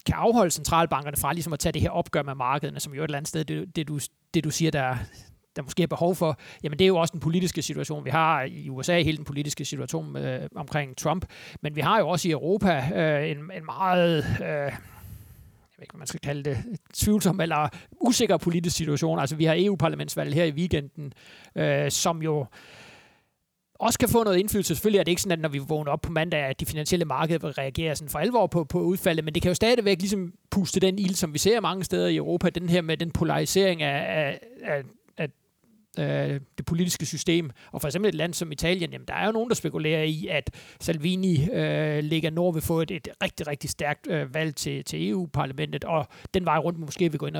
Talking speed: 230 wpm